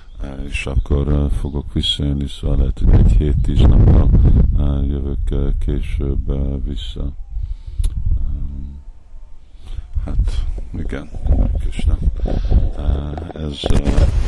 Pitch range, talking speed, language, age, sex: 75-85 Hz, 65 wpm, Hungarian, 50-69, male